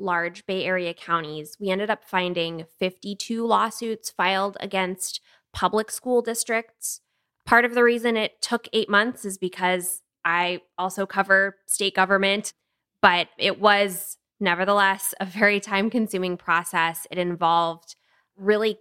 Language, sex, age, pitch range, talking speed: English, female, 20-39, 175-210 Hz, 130 wpm